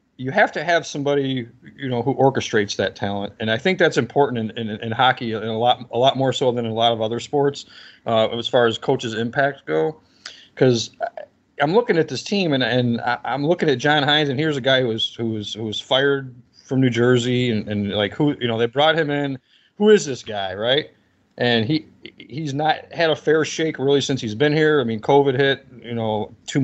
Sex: male